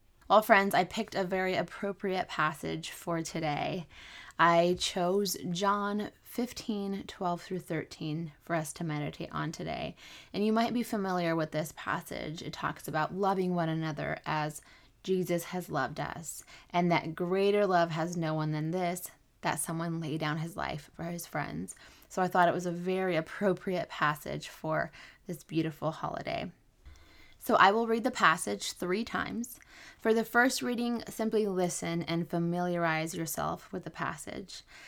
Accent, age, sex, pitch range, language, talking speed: American, 20-39, female, 160-200 Hz, English, 160 wpm